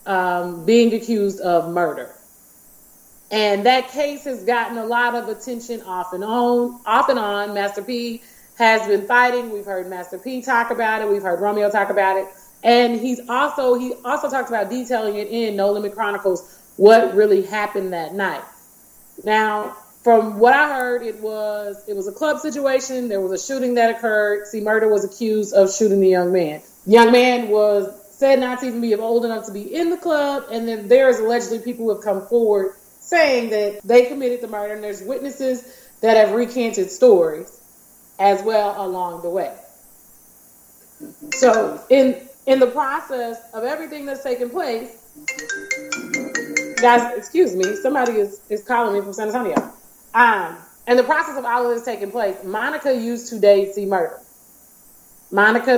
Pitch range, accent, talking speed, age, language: 205-255 Hz, American, 175 wpm, 30-49, English